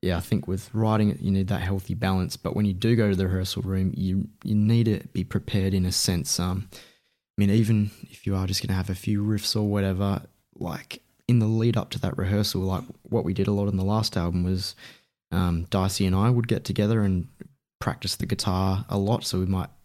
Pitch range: 90-105 Hz